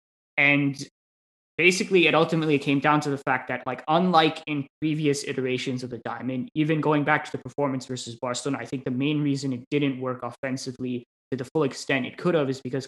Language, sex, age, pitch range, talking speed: English, male, 20-39, 130-150 Hz, 205 wpm